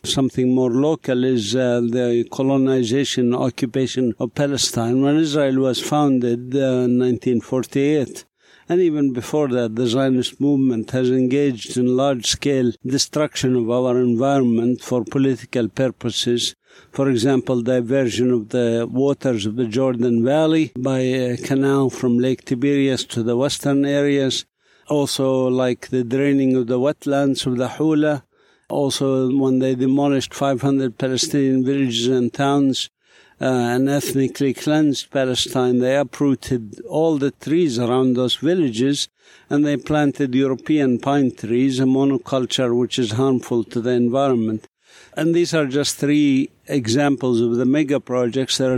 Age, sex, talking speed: 60-79, male, 140 wpm